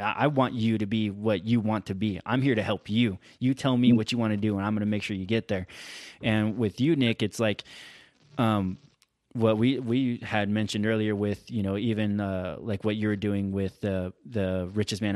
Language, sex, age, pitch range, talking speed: English, male, 20-39, 100-115 Hz, 240 wpm